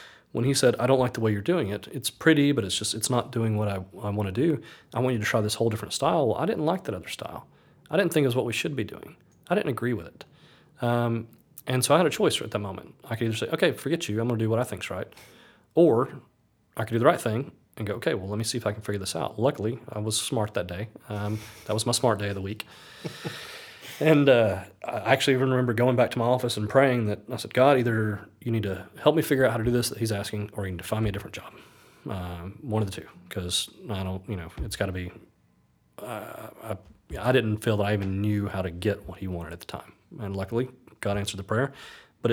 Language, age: English, 30-49